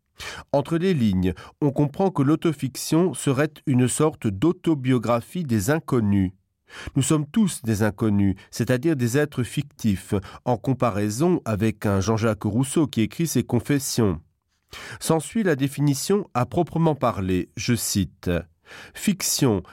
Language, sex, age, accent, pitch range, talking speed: French, male, 40-59, French, 110-150 Hz, 125 wpm